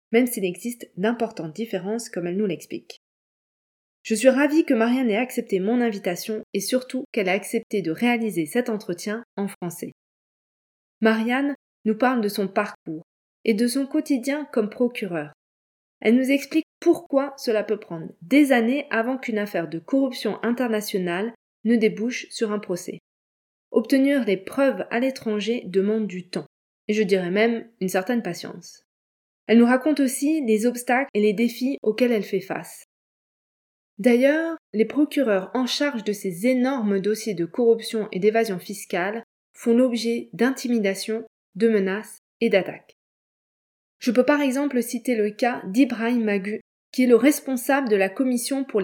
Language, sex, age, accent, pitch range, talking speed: French, female, 20-39, French, 205-250 Hz, 155 wpm